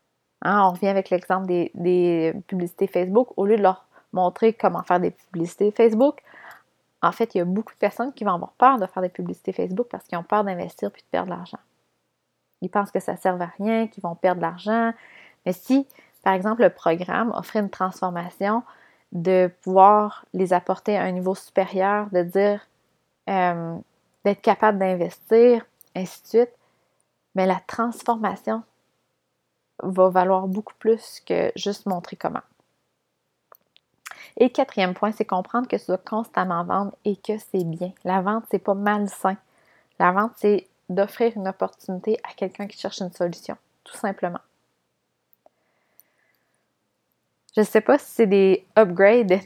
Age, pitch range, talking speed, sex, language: 30-49, 185-215 Hz, 165 wpm, female, French